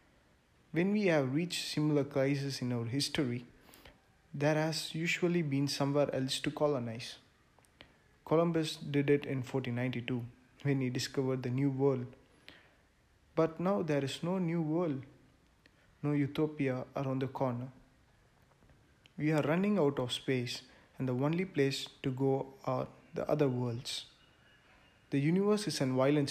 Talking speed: 140 wpm